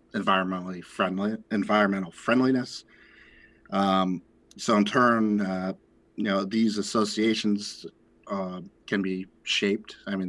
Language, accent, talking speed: English, American, 110 wpm